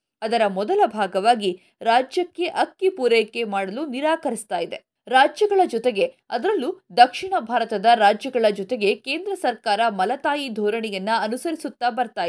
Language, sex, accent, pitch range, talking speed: Kannada, female, native, 220-320 Hz, 105 wpm